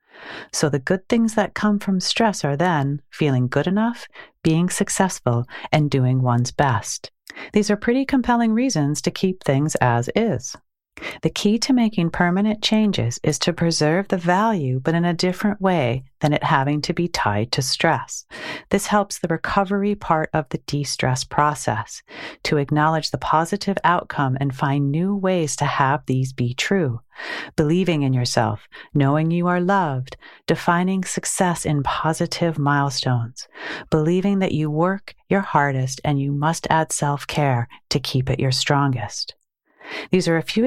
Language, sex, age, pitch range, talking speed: English, female, 40-59, 140-190 Hz, 160 wpm